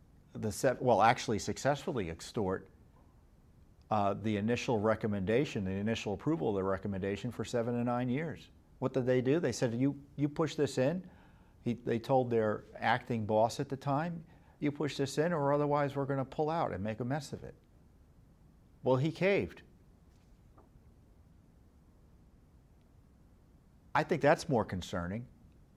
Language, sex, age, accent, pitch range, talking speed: English, male, 50-69, American, 100-130 Hz, 145 wpm